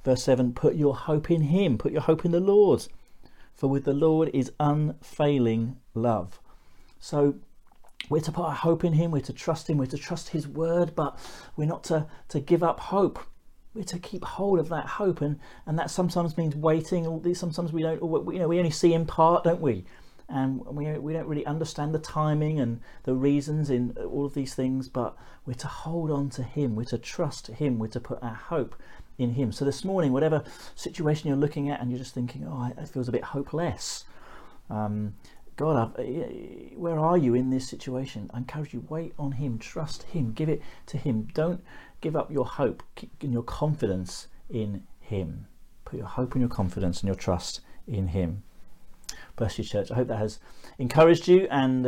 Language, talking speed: English, 200 wpm